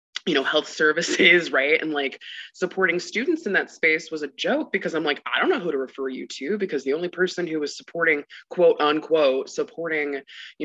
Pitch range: 135-185 Hz